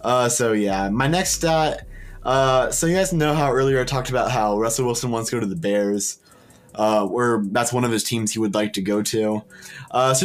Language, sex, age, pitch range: English, male, 20-39, 105-135 Hz